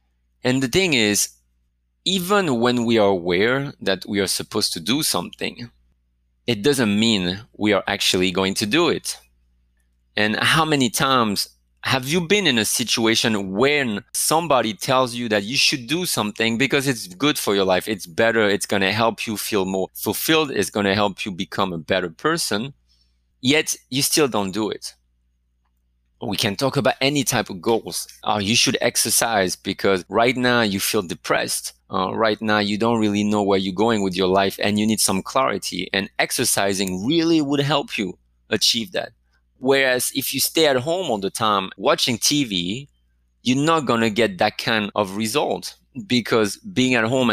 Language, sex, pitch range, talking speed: English, male, 95-125 Hz, 185 wpm